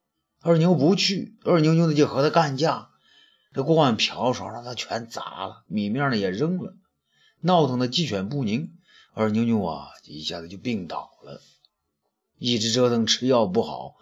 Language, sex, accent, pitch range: Chinese, male, native, 120-170 Hz